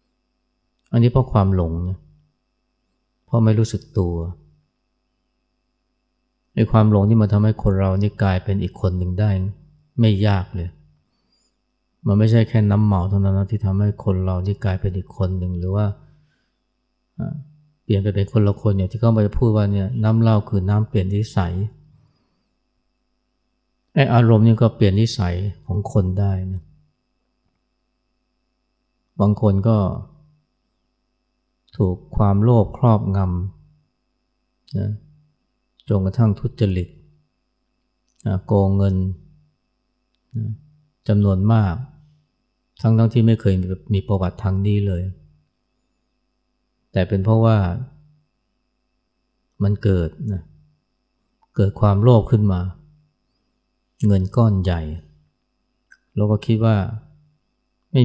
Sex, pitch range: male, 95-115 Hz